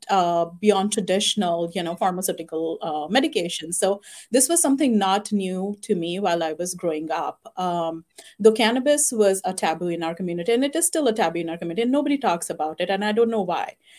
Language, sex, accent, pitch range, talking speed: English, female, Indian, 175-220 Hz, 210 wpm